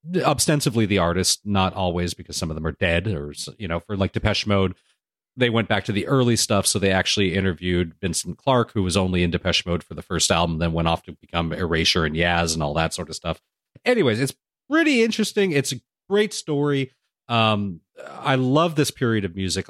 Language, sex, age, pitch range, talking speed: English, male, 30-49, 95-125 Hz, 215 wpm